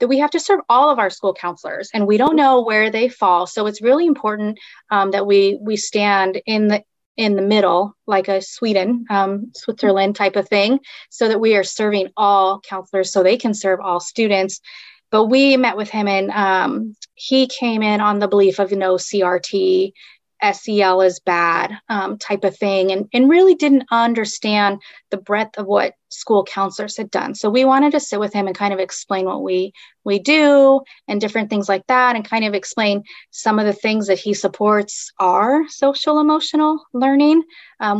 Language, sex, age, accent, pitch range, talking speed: English, female, 30-49, American, 195-230 Hz, 195 wpm